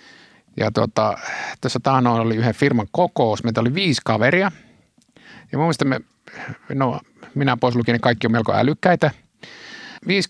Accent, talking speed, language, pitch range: native, 135 wpm, Finnish, 110-140 Hz